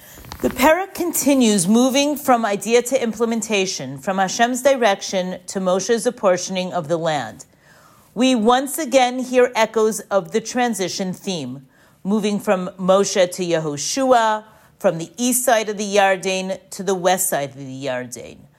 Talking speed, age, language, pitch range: 145 wpm, 40-59, English, 185-245 Hz